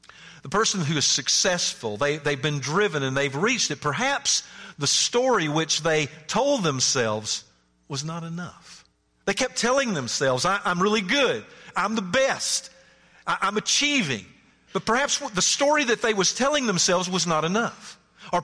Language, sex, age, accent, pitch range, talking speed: English, male, 50-69, American, 120-185 Hz, 155 wpm